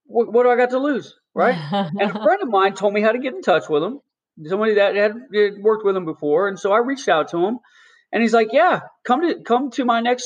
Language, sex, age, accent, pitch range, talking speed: English, male, 30-49, American, 165-250 Hz, 265 wpm